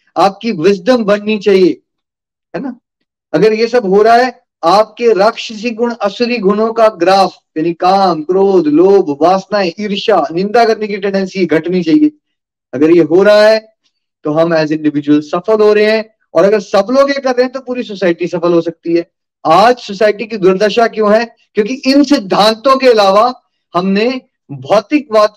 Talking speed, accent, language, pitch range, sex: 160 wpm, native, Hindi, 185-245 Hz, male